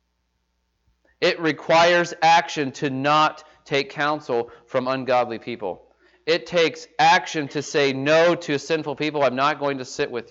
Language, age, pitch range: English, 30-49, 140-175 Hz